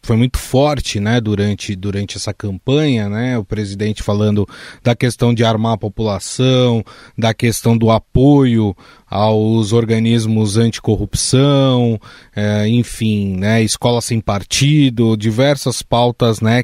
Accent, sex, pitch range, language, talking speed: Brazilian, male, 110-135 Hz, Portuguese, 125 wpm